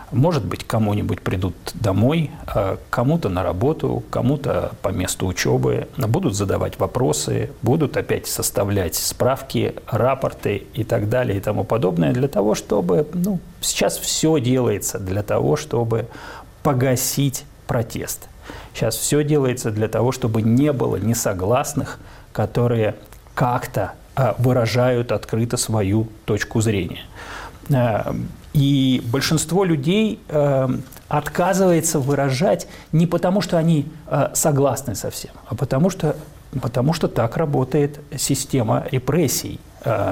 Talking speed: 110 wpm